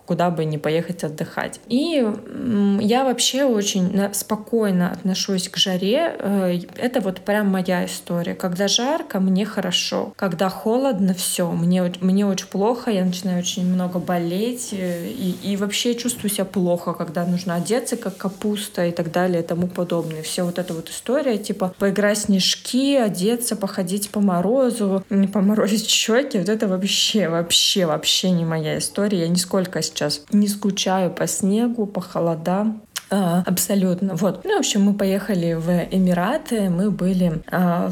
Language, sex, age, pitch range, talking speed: Russian, female, 20-39, 175-210 Hz, 155 wpm